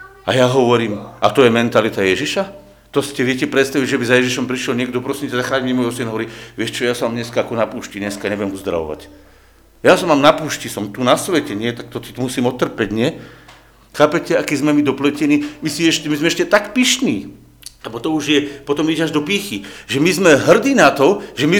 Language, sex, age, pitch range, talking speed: Slovak, male, 50-69, 125-170 Hz, 220 wpm